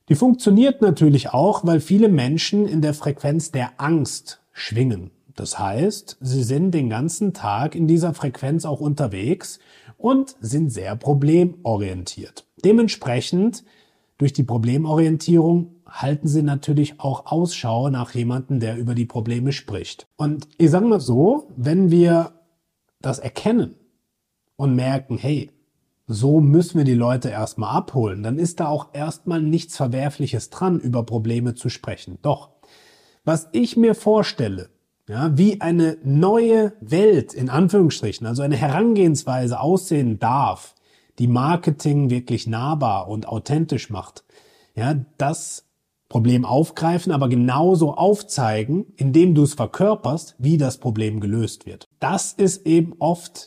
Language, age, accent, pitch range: German, 30-49, German, 125-170 Hz